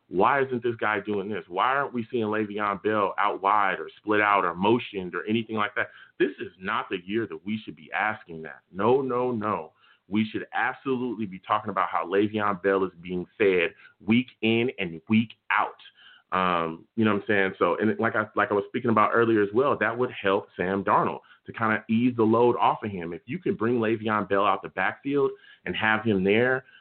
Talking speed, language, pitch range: 220 wpm, English, 105-130 Hz